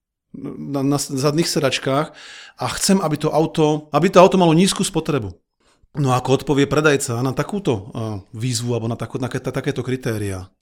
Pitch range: 135-175 Hz